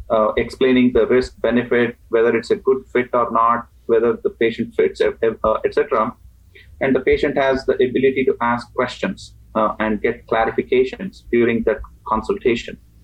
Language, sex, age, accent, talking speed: English, male, 30-49, Indian, 155 wpm